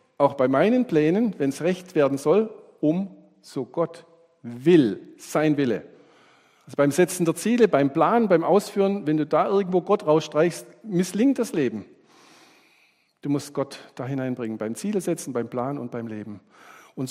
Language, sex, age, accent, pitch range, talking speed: German, male, 50-69, German, 140-180 Hz, 165 wpm